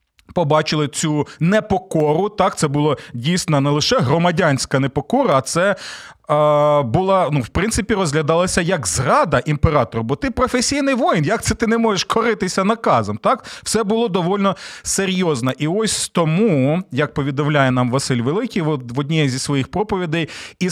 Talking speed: 150 wpm